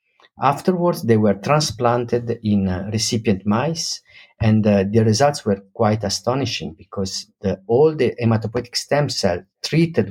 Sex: male